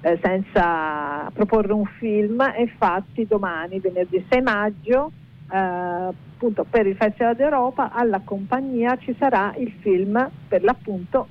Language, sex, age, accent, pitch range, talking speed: Italian, female, 50-69, native, 180-225 Hz, 125 wpm